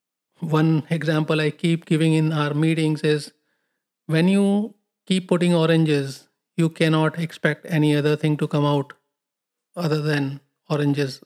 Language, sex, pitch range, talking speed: English, male, 150-180 Hz, 140 wpm